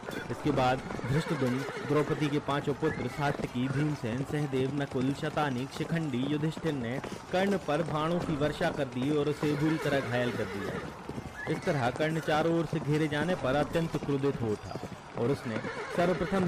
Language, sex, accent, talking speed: Hindi, male, native, 85 wpm